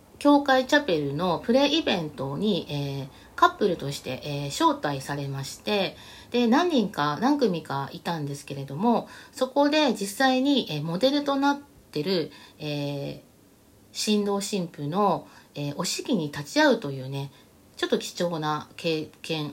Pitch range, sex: 145-230 Hz, female